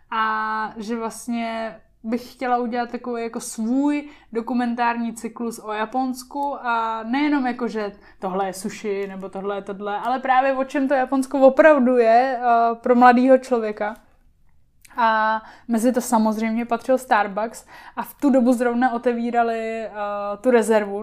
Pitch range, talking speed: 220-250 Hz, 140 wpm